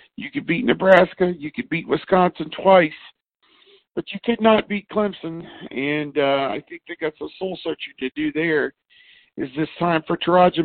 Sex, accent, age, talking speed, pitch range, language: male, American, 50-69, 190 wpm, 155-185 Hz, English